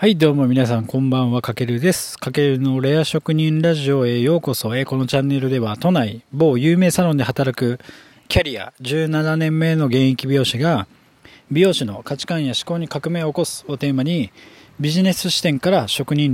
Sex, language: male, Japanese